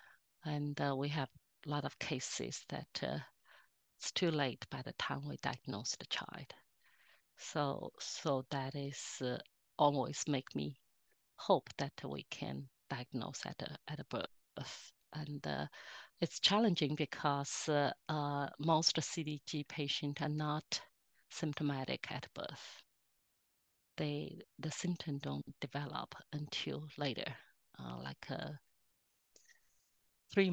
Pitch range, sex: 140-155 Hz, female